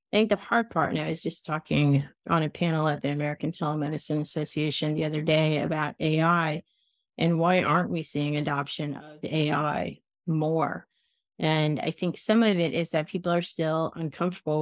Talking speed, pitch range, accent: 180 wpm, 150-175 Hz, American